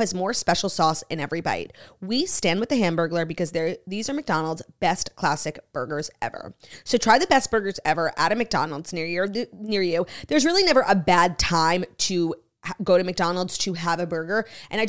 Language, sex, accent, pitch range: English, female, American, 170-225 Hz